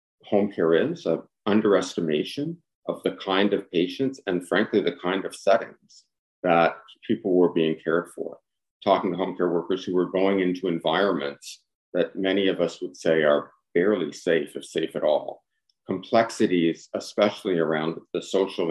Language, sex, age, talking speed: English, male, 50-69, 160 wpm